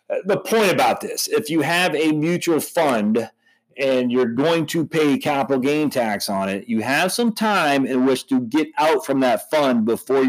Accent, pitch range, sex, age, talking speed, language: American, 120-170 Hz, male, 40-59, 190 wpm, English